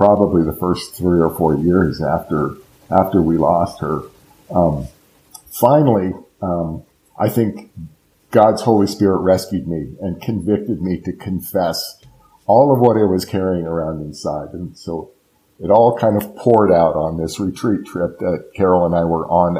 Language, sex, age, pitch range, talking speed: English, male, 50-69, 85-105 Hz, 160 wpm